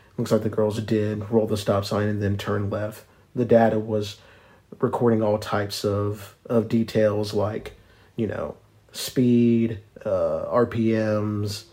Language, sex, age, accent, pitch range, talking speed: English, male, 40-59, American, 105-125 Hz, 140 wpm